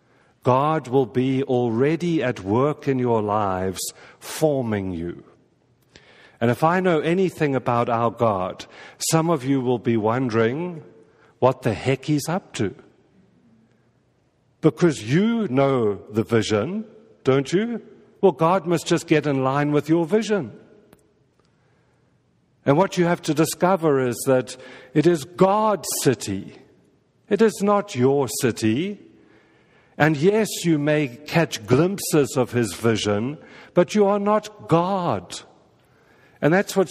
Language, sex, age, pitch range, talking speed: English, male, 50-69, 130-175 Hz, 135 wpm